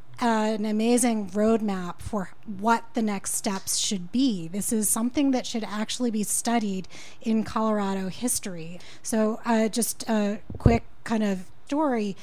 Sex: female